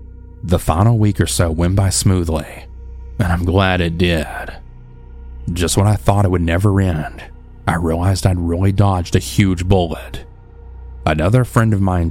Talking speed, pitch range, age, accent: 165 wpm, 80-100 Hz, 30-49, American